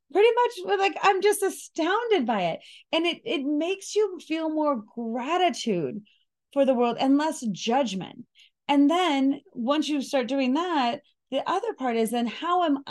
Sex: female